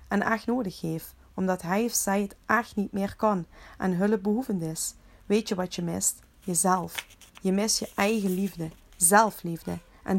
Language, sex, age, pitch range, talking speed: Dutch, female, 40-59, 175-210 Hz, 170 wpm